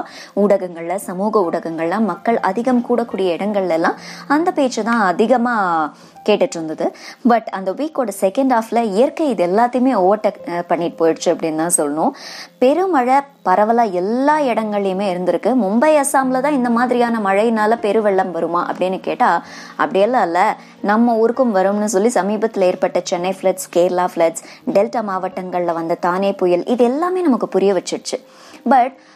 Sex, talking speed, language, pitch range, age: male, 75 wpm, Tamil, 185-255 Hz, 20-39